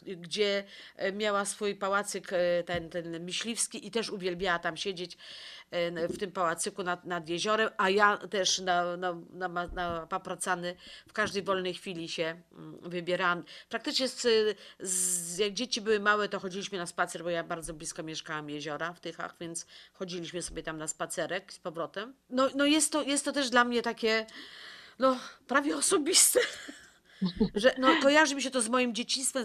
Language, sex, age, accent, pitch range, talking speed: Polish, female, 40-59, native, 180-245 Hz, 155 wpm